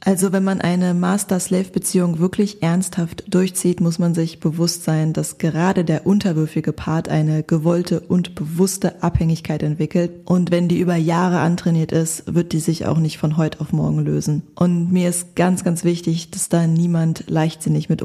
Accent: German